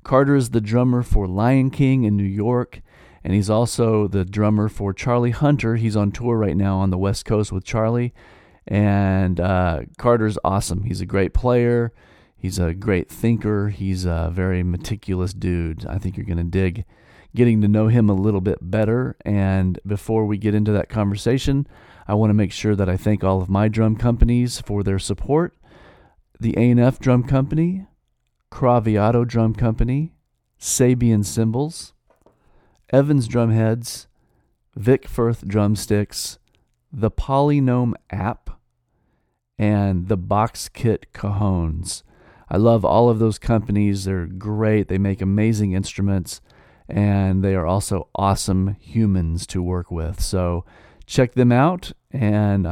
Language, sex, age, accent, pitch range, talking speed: English, male, 40-59, American, 95-120 Hz, 150 wpm